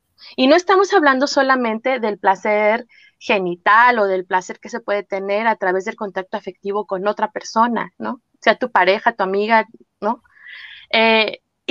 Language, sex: Spanish, female